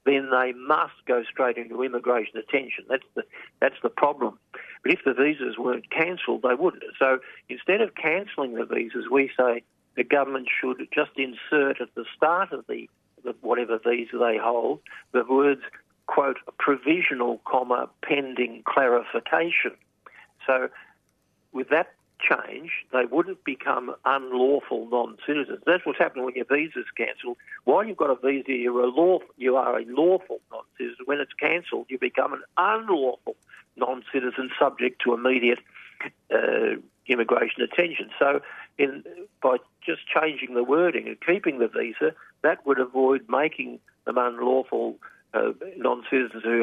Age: 50-69